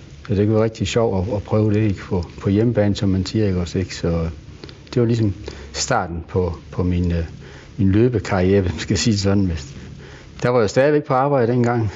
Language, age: Danish, 60-79